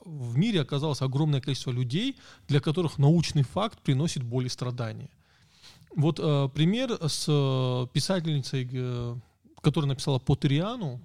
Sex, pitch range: male, 130-155 Hz